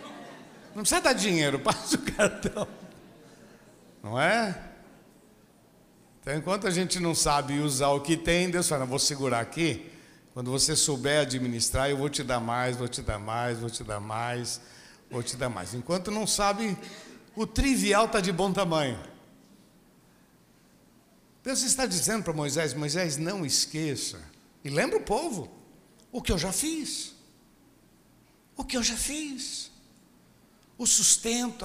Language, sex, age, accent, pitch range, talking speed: Portuguese, male, 60-79, Brazilian, 150-240 Hz, 150 wpm